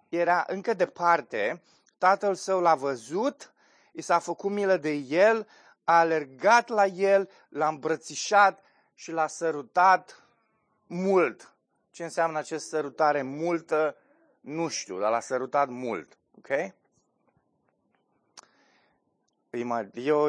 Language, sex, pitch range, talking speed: Romanian, male, 140-190 Hz, 110 wpm